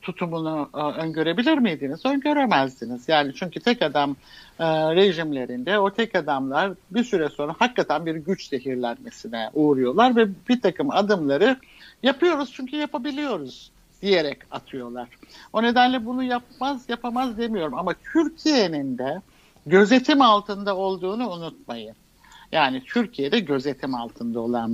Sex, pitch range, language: male, 135-195 Hz, Turkish